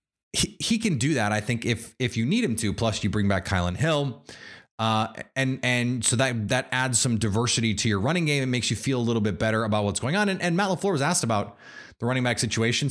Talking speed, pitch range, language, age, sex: 250 wpm, 110-140 Hz, English, 30-49, male